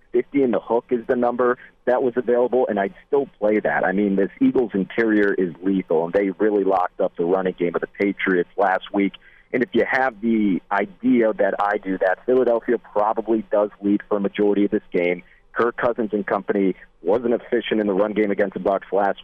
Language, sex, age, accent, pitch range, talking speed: English, male, 40-59, American, 95-115 Hz, 215 wpm